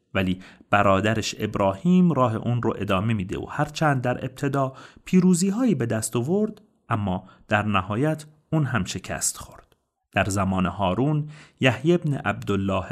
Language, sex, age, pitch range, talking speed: Persian, male, 40-59, 100-145 Hz, 140 wpm